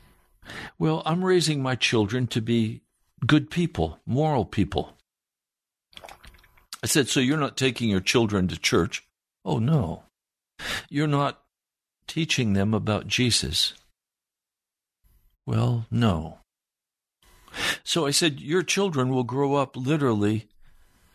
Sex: male